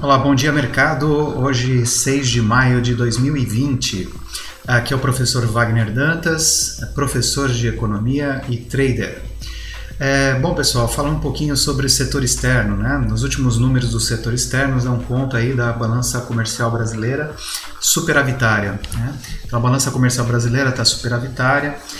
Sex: male